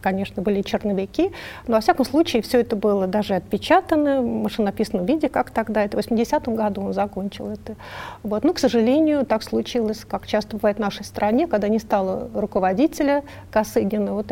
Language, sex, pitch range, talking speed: Russian, female, 200-235 Hz, 175 wpm